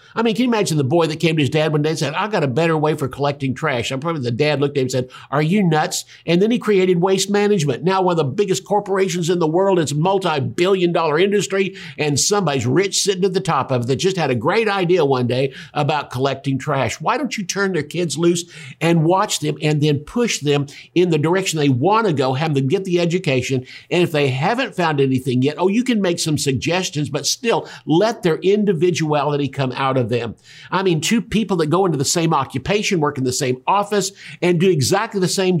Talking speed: 245 wpm